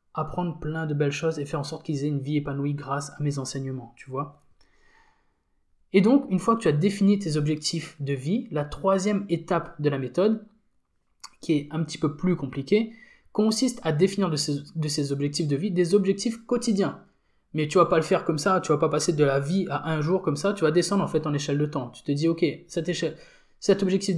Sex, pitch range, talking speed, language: male, 145-195 Hz, 240 wpm, French